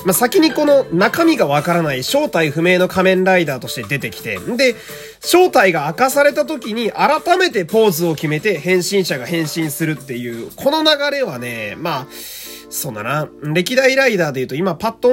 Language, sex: Japanese, male